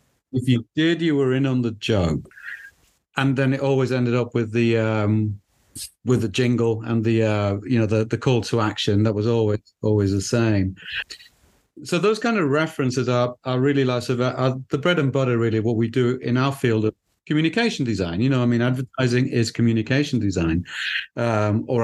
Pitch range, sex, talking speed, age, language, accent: 115-145 Hz, male, 190 wpm, 40-59, English, British